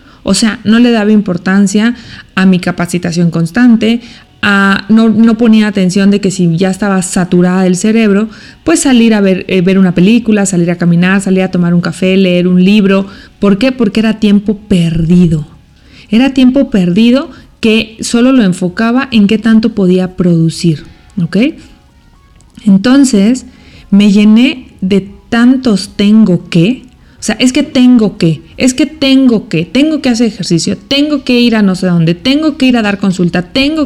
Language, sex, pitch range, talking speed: English, female, 185-240 Hz, 170 wpm